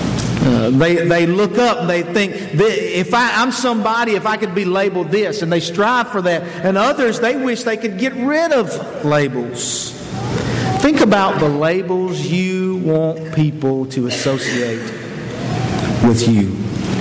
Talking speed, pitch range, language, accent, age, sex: 155 wpm, 150-215 Hz, English, American, 50-69, male